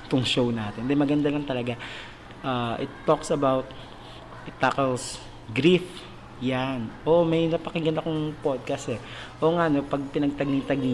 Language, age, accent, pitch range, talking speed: Filipino, 20-39, native, 125-155 Hz, 145 wpm